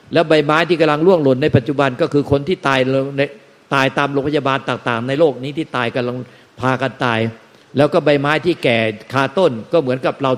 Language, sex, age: Thai, male, 50-69